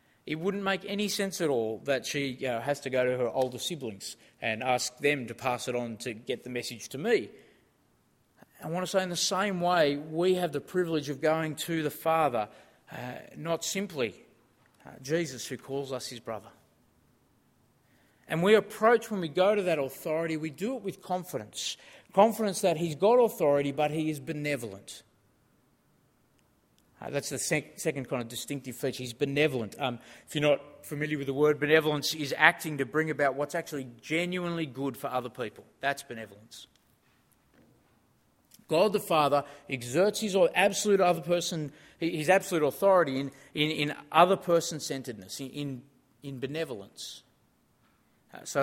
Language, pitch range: English, 130-170 Hz